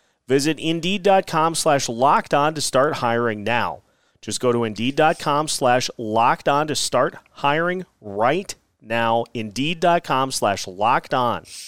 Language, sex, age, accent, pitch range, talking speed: English, male, 30-49, American, 115-150 Hz, 115 wpm